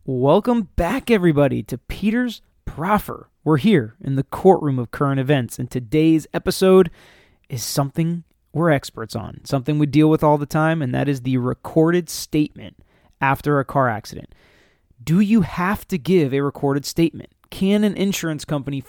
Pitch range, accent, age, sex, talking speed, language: 135-165 Hz, American, 30-49, male, 160 wpm, English